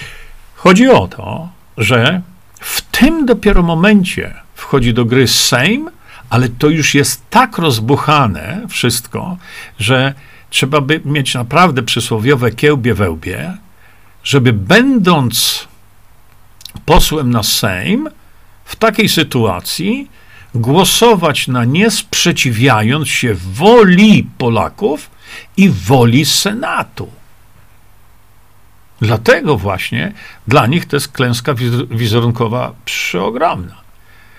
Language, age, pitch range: Polish, 50-69, 110-170 Hz